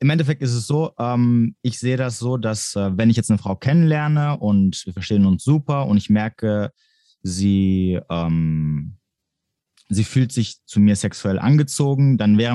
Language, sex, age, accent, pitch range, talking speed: German, male, 20-39, German, 95-120 Hz, 175 wpm